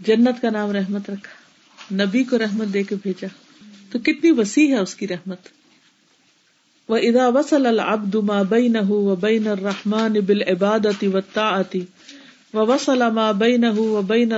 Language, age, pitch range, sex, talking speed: Urdu, 50-69, 200-255 Hz, female, 120 wpm